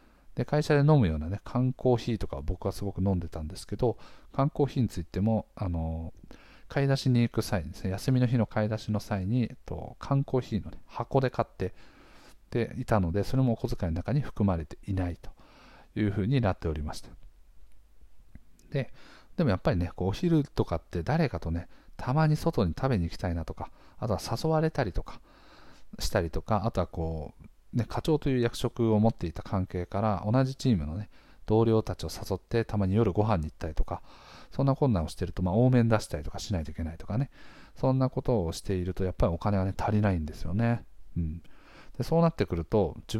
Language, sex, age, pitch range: Japanese, male, 50-69, 90-125 Hz